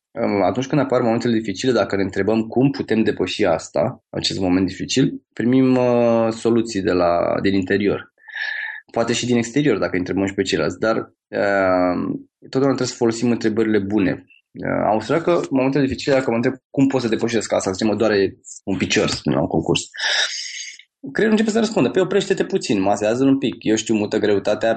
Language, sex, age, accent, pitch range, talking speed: Romanian, male, 20-39, native, 105-130 Hz, 190 wpm